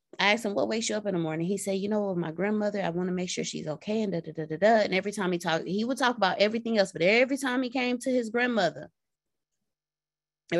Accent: American